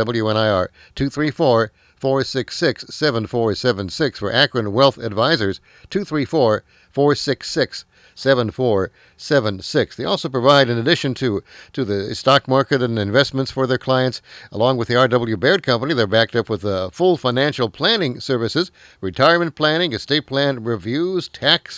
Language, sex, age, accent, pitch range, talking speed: English, male, 60-79, American, 115-140 Hz, 125 wpm